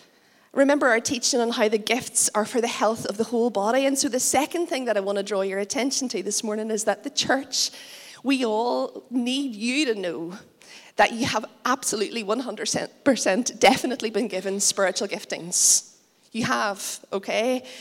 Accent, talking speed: Irish, 180 wpm